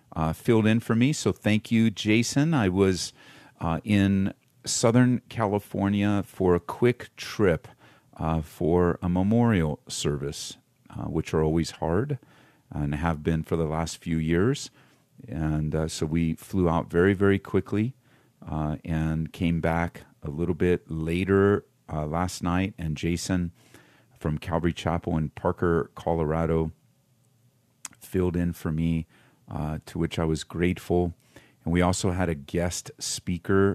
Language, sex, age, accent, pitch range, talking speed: English, male, 40-59, American, 80-100 Hz, 145 wpm